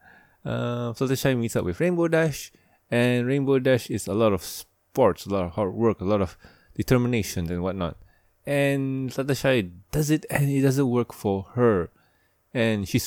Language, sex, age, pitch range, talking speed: English, male, 20-39, 95-130 Hz, 175 wpm